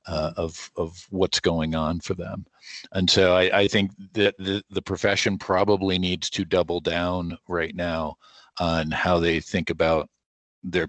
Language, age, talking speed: English, 40-59, 165 wpm